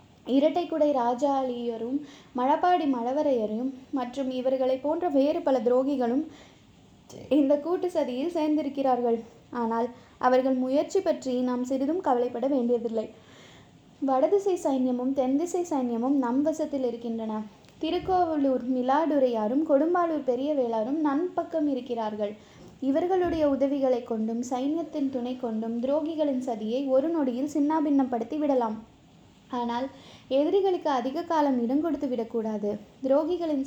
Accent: native